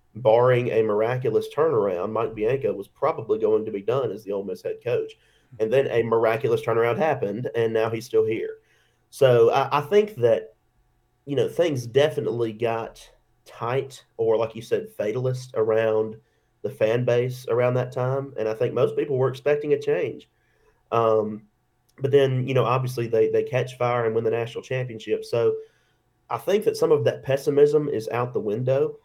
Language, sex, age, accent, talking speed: English, male, 30-49, American, 180 wpm